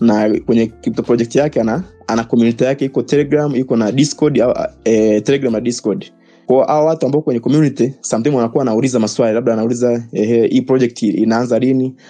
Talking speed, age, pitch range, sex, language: 180 wpm, 20-39, 115-135 Hz, male, Swahili